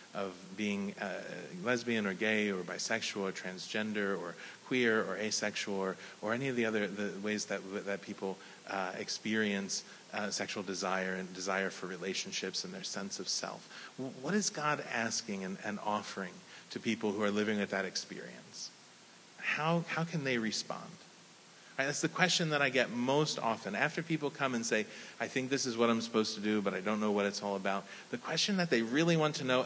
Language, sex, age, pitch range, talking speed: English, male, 30-49, 100-135 Hz, 200 wpm